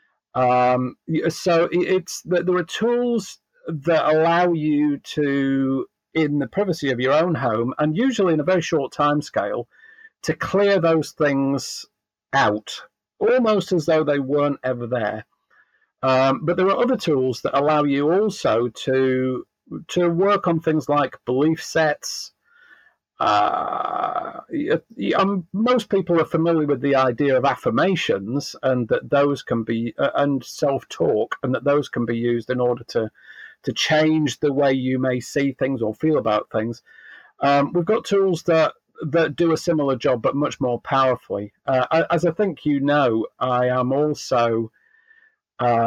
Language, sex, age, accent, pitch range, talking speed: Romanian, male, 50-69, British, 130-170 Hz, 155 wpm